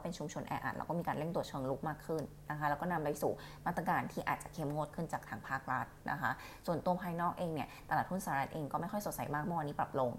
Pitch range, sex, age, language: 145-175 Hz, female, 20-39, Thai